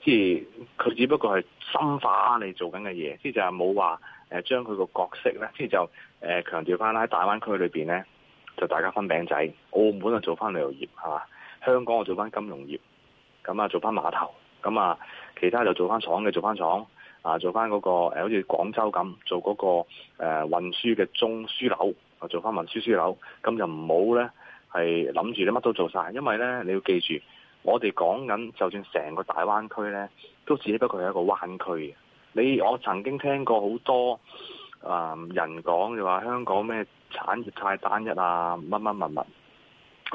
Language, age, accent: Chinese, 20-39, native